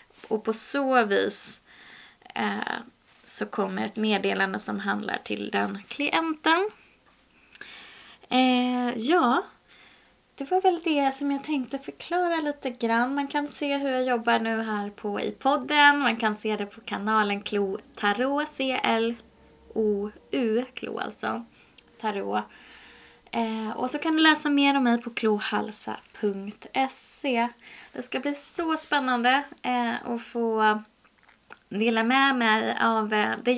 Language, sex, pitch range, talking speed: Swedish, female, 220-280 Hz, 130 wpm